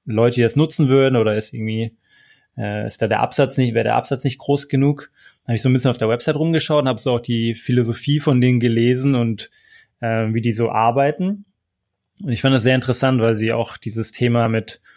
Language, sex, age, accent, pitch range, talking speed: German, male, 20-39, German, 115-135 Hz, 225 wpm